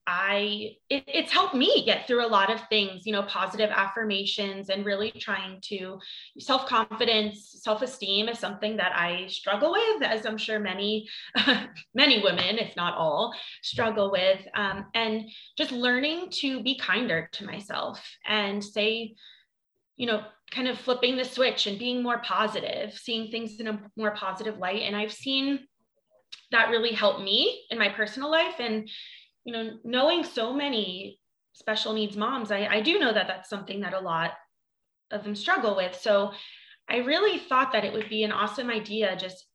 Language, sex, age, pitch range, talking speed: English, female, 20-39, 205-250 Hz, 170 wpm